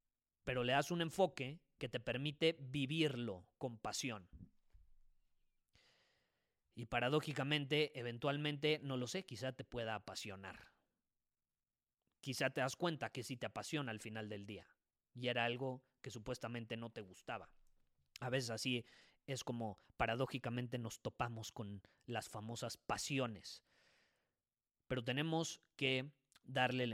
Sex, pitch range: male, 115-155 Hz